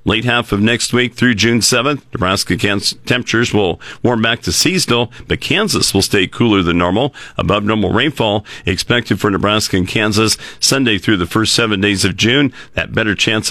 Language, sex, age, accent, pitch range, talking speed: English, male, 50-69, American, 100-125 Hz, 180 wpm